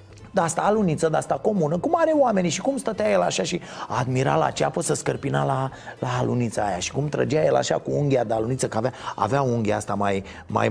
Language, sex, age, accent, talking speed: Romanian, male, 30-49, native, 225 wpm